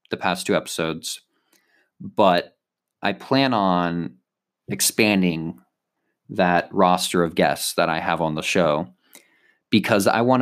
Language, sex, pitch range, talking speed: English, male, 90-110 Hz, 125 wpm